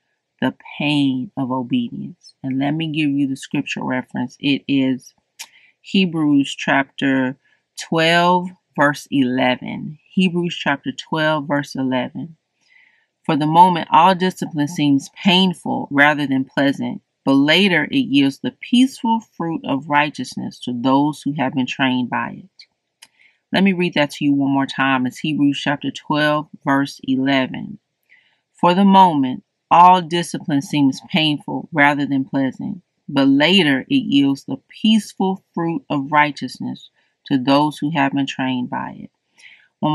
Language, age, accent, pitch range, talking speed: English, 30-49, American, 140-175 Hz, 140 wpm